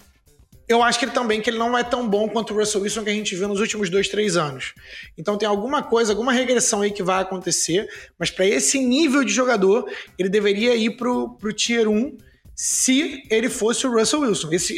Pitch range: 190-250 Hz